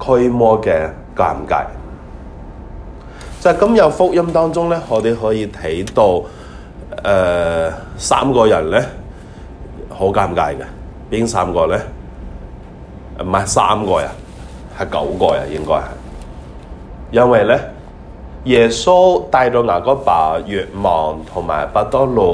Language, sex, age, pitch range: Chinese, male, 30-49, 70-115 Hz